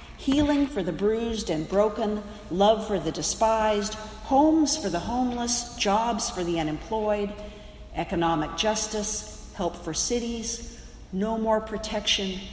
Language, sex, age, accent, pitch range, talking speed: English, female, 50-69, American, 165-225 Hz, 125 wpm